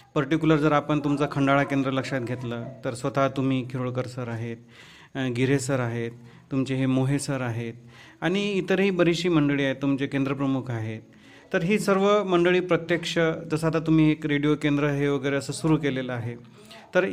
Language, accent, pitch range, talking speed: Marathi, native, 135-160 Hz, 165 wpm